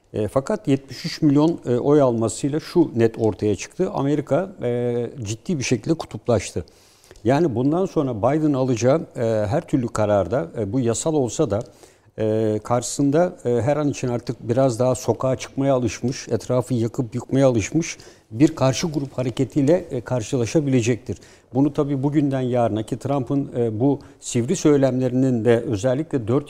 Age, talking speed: 60-79, 150 wpm